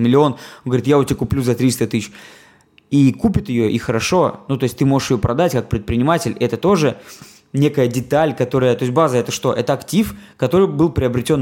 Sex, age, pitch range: male, 20-39, 115-145 Hz